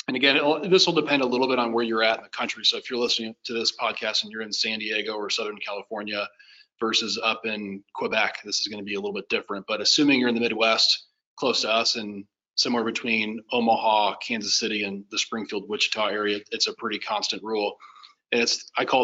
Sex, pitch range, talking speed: male, 115-140 Hz, 225 wpm